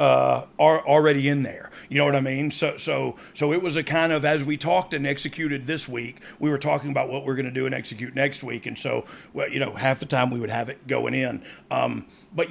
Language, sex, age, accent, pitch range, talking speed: English, male, 40-59, American, 130-155 Hz, 260 wpm